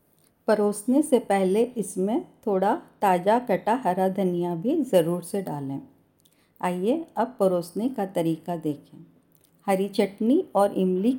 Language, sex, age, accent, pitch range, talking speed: Hindi, female, 50-69, native, 180-215 Hz, 125 wpm